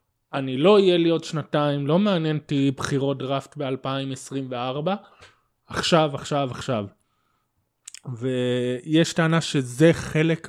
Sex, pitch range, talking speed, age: male, 130-170 Hz, 110 wpm, 20-39